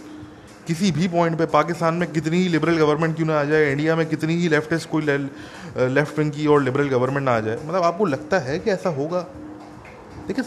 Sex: male